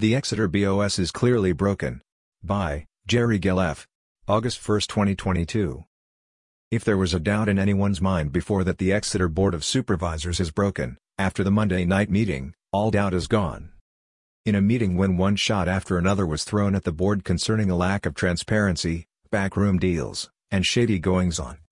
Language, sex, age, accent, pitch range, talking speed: English, male, 50-69, American, 90-105 Hz, 170 wpm